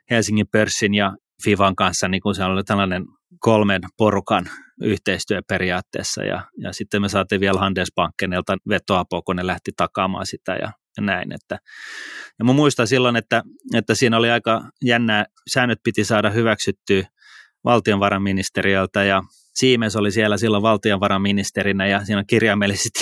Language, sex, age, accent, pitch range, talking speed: English, male, 30-49, Finnish, 95-115 Hz, 140 wpm